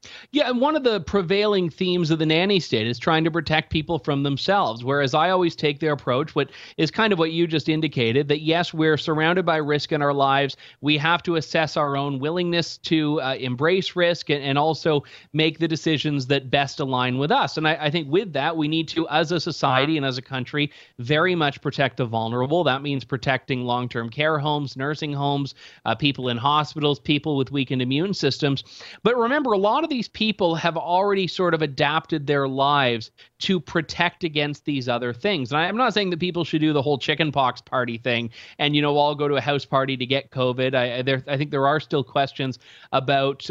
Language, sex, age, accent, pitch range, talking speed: English, male, 30-49, American, 135-165 Hz, 215 wpm